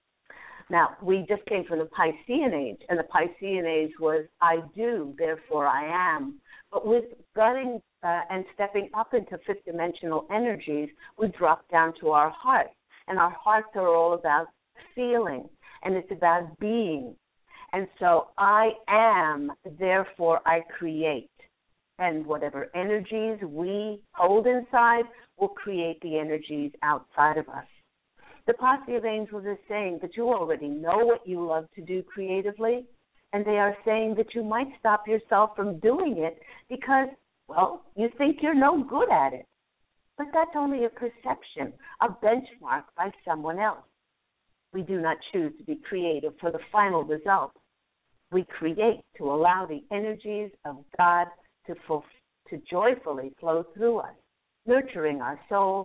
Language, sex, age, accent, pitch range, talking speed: English, female, 50-69, American, 165-225 Hz, 155 wpm